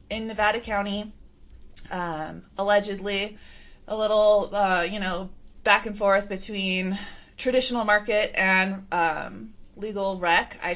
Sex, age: female, 20-39